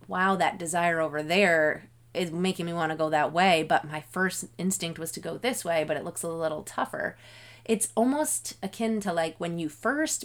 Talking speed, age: 210 wpm, 20-39